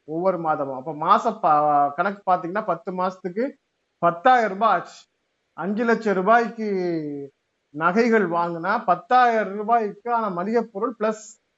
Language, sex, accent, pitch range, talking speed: Tamil, male, native, 160-215 Hz, 95 wpm